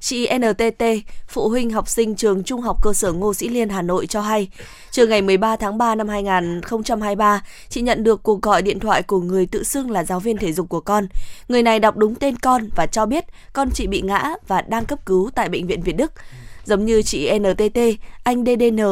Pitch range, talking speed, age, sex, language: 195-230 Hz, 225 wpm, 20-39, female, Vietnamese